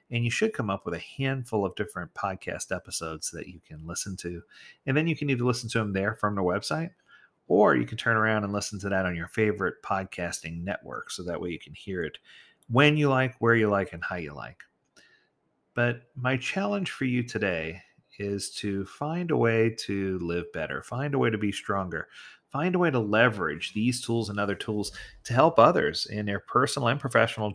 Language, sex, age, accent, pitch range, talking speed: English, male, 40-59, American, 100-125 Hz, 215 wpm